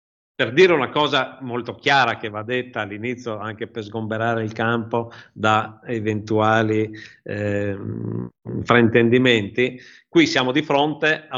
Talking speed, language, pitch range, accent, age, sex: 120 wpm, Italian, 105-125 Hz, native, 50-69, male